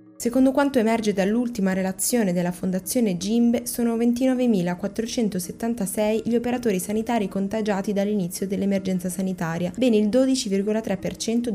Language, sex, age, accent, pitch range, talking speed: Italian, female, 20-39, native, 180-225 Hz, 105 wpm